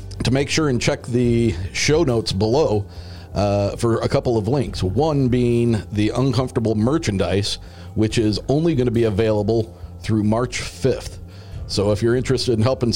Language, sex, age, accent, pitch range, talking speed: English, male, 40-59, American, 100-125 Hz, 165 wpm